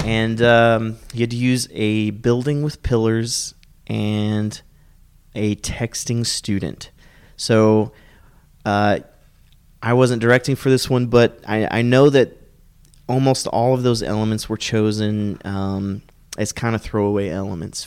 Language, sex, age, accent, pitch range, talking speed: English, male, 30-49, American, 100-120 Hz, 135 wpm